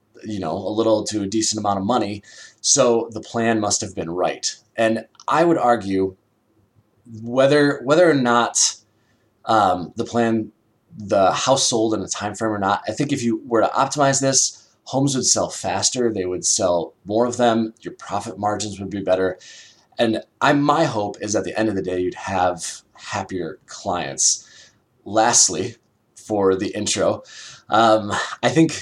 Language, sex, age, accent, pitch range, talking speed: English, male, 20-39, American, 105-125 Hz, 175 wpm